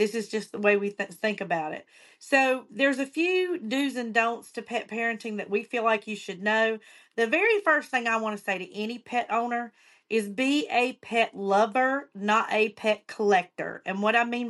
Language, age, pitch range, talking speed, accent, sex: English, 40-59, 205-240 Hz, 210 wpm, American, female